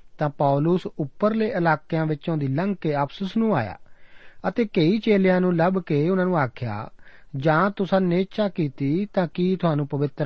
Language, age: Punjabi, 40-59